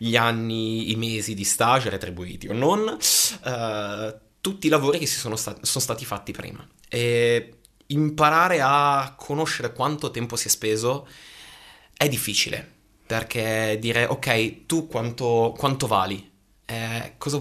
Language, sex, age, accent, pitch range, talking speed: Italian, male, 20-39, native, 105-130 Hz, 140 wpm